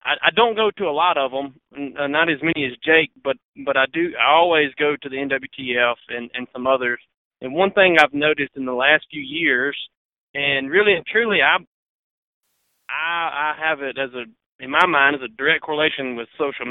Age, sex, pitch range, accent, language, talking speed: 30-49, male, 130-170 Hz, American, English, 205 wpm